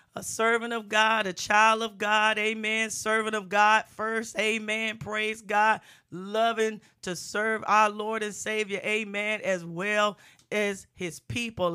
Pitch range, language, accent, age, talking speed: 185-210 Hz, English, American, 40-59, 150 wpm